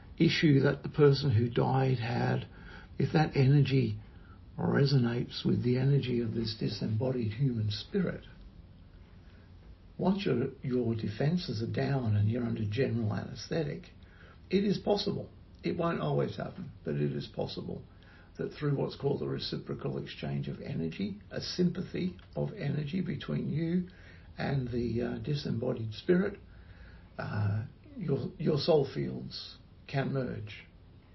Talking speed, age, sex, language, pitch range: 130 wpm, 60-79, male, English, 90-130 Hz